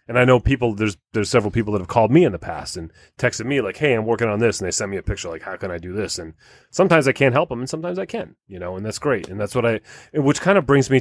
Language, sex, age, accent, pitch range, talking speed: English, male, 30-49, American, 95-120 Hz, 325 wpm